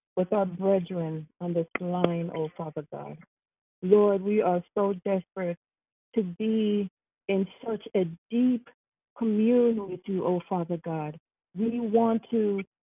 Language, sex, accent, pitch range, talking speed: English, female, American, 180-230 Hz, 135 wpm